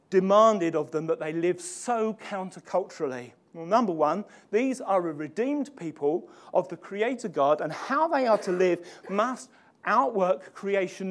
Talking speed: 155 wpm